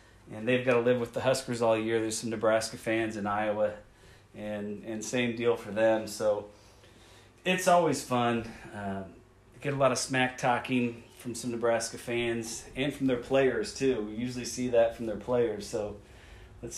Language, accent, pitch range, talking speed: English, American, 100-125 Hz, 180 wpm